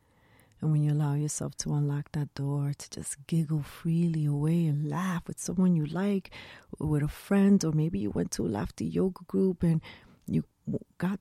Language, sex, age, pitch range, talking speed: English, female, 30-49, 140-170 Hz, 185 wpm